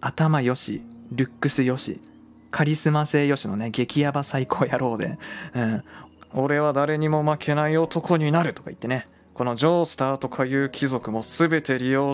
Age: 20-39